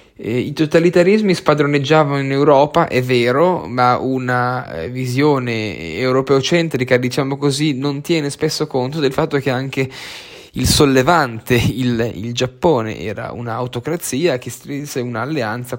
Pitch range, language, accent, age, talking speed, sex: 125-150 Hz, Italian, native, 10-29, 120 wpm, male